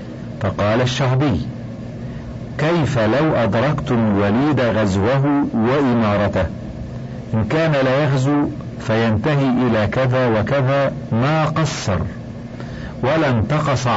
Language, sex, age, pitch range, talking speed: Arabic, male, 50-69, 110-140 Hz, 85 wpm